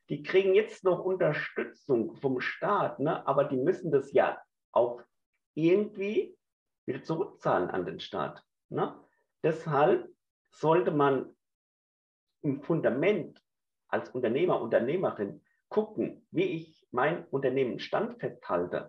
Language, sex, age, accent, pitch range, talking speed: German, male, 50-69, German, 145-215 Hz, 115 wpm